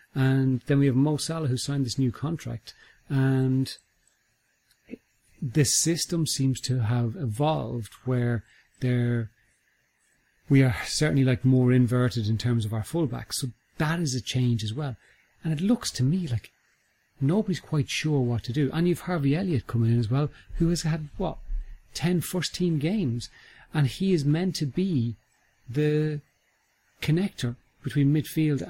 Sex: male